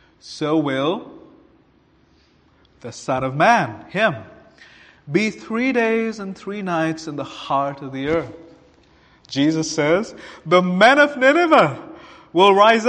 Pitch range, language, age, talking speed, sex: 130-195 Hz, English, 30-49, 125 wpm, male